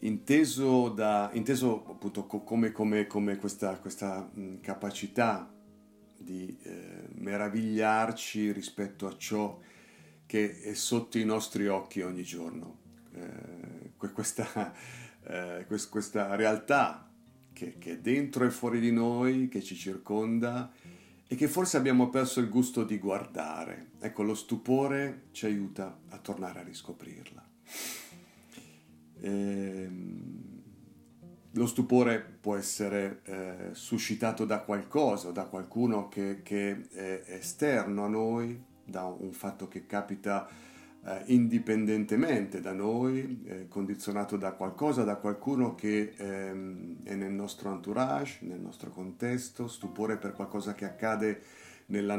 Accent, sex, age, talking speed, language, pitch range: native, male, 50-69, 120 wpm, Italian, 95-120 Hz